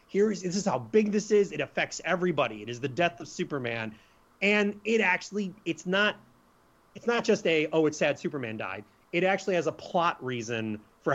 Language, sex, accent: English, male, American